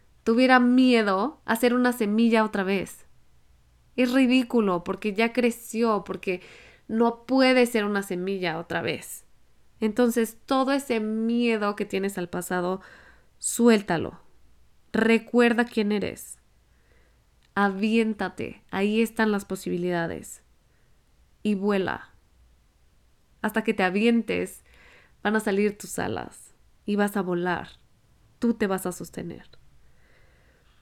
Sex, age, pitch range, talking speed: female, 20-39, 170-225 Hz, 115 wpm